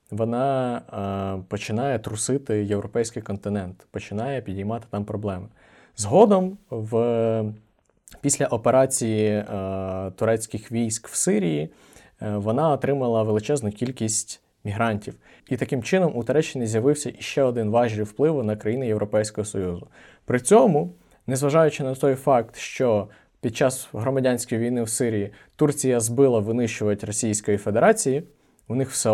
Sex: male